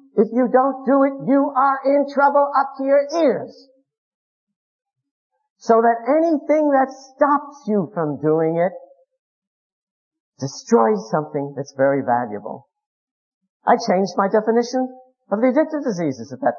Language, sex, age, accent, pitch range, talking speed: English, male, 50-69, American, 185-275 Hz, 135 wpm